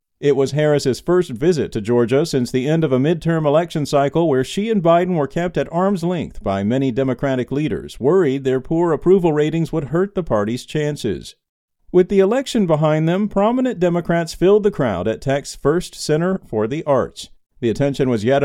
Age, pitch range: 50-69, 130-175 Hz